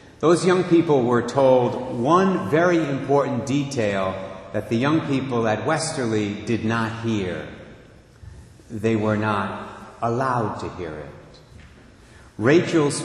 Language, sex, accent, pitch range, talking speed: English, male, American, 105-150 Hz, 120 wpm